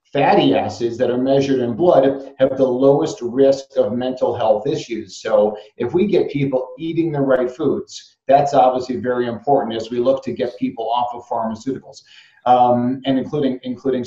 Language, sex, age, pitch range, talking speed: English, male, 40-59, 120-140 Hz, 175 wpm